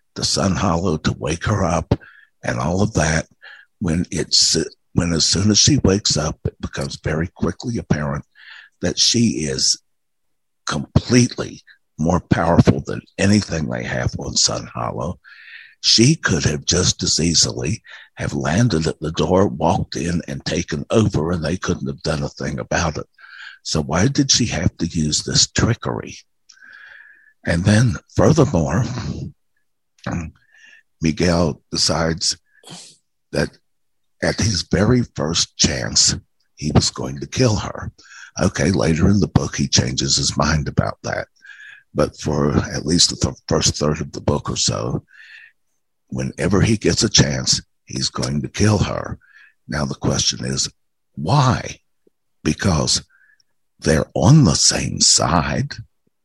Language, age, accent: English, 60-79, American